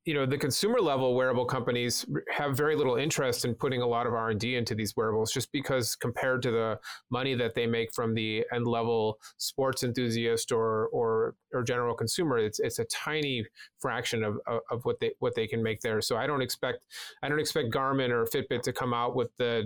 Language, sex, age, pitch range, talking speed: English, male, 30-49, 115-140 Hz, 215 wpm